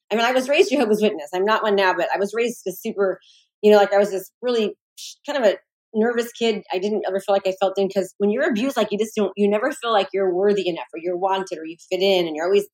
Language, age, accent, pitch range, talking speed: English, 30-49, American, 195-240 Hz, 290 wpm